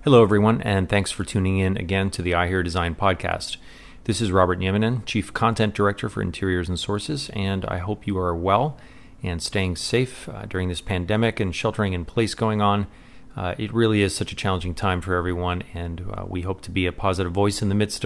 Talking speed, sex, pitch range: 220 wpm, male, 95-110 Hz